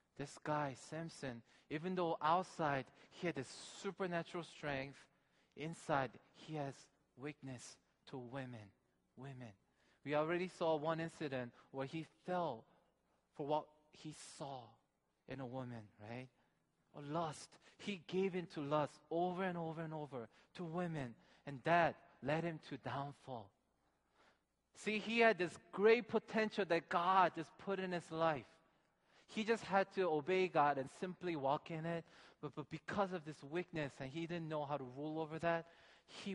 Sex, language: male, Korean